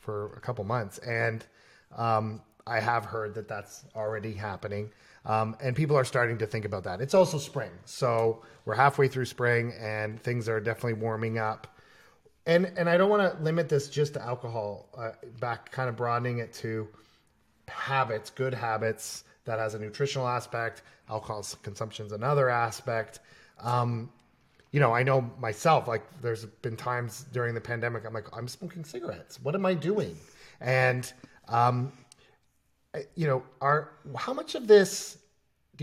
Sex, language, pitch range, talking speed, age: male, English, 110-135 Hz, 165 wpm, 30-49